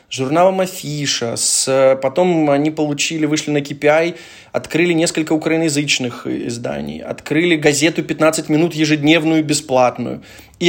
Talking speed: 105 wpm